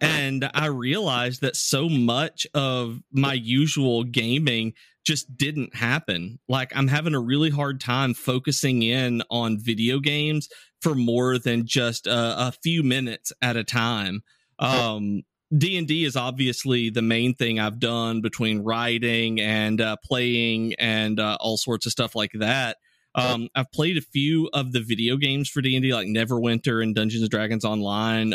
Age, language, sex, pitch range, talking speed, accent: 30-49, English, male, 115-140 Hz, 160 wpm, American